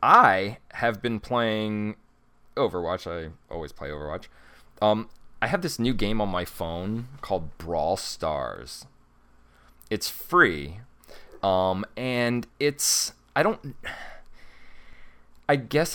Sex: male